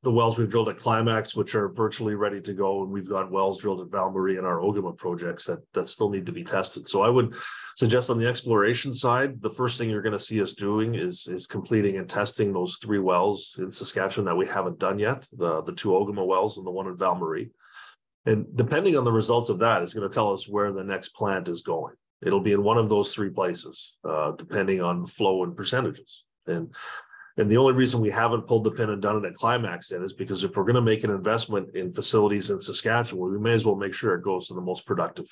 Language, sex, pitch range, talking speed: English, male, 95-115 Hz, 245 wpm